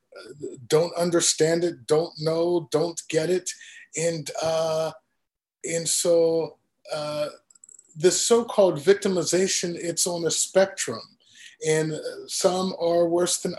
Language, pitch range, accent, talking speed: English, 150-180 Hz, American, 110 wpm